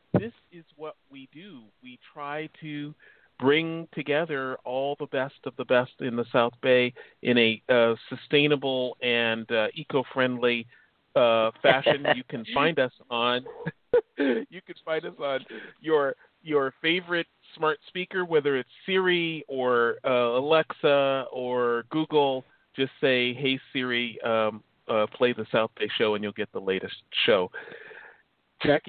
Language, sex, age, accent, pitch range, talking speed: English, male, 40-59, American, 125-155 Hz, 145 wpm